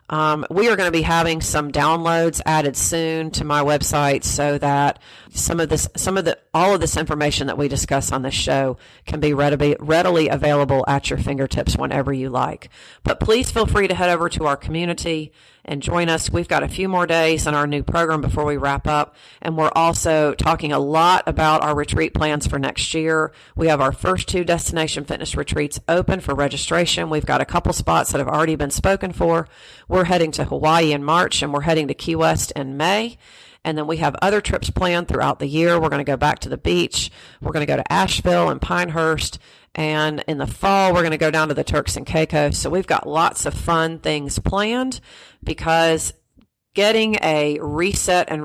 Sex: female